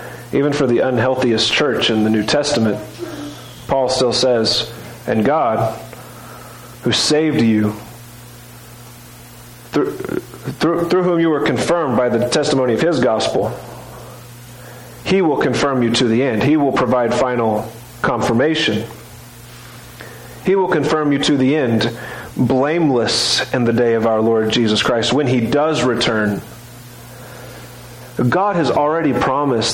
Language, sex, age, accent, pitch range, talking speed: English, male, 40-59, American, 120-150 Hz, 135 wpm